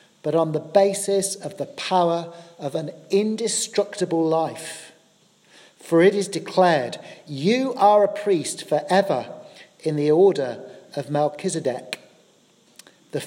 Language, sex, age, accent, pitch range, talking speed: English, male, 40-59, British, 155-195 Hz, 120 wpm